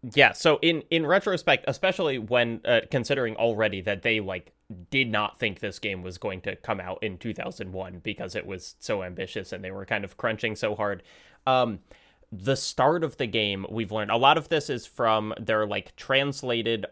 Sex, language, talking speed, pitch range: male, English, 195 wpm, 105-145 Hz